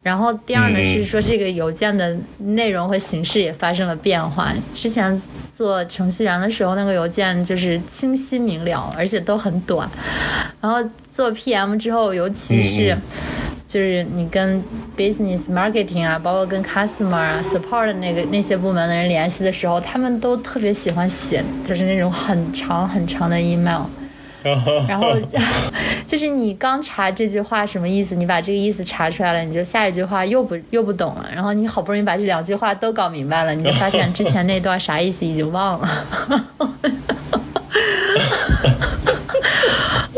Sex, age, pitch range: female, 20-39, 170-220 Hz